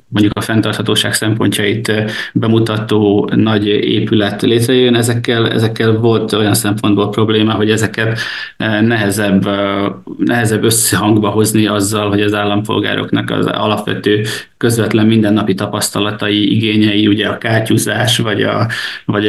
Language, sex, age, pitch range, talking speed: Hungarian, male, 20-39, 105-115 Hz, 110 wpm